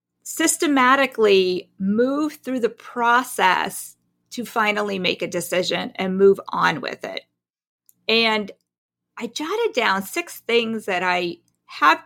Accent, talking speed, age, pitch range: American, 120 wpm, 40-59, 195-280 Hz